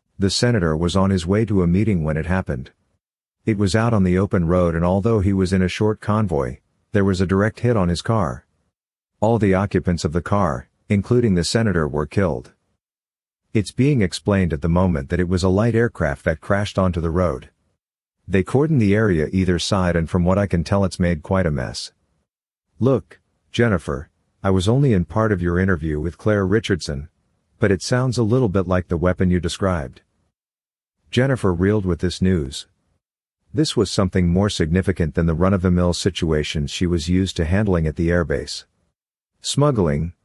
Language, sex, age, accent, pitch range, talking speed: English, male, 50-69, American, 85-105 Hz, 190 wpm